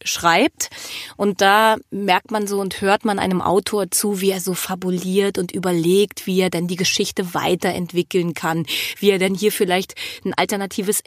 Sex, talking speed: female, 175 wpm